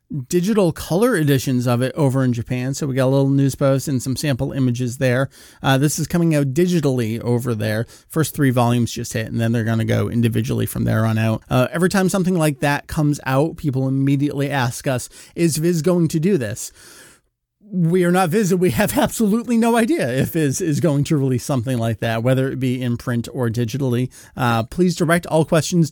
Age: 30-49